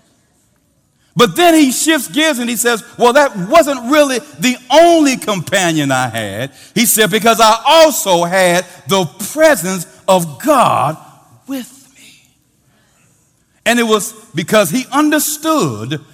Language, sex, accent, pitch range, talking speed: English, male, American, 145-235 Hz, 130 wpm